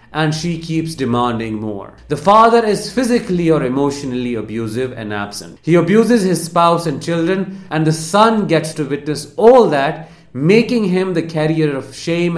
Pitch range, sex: 125-185 Hz, male